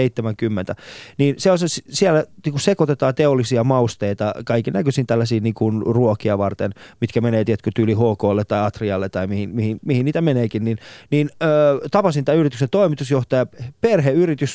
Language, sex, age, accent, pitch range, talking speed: Finnish, male, 20-39, native, 125-170 Hz, 155 wpm